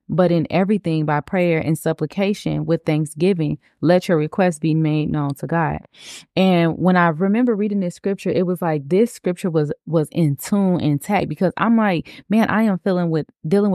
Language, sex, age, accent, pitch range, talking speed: English, female, 20-39, American, 155-185 Hz, 190 wpm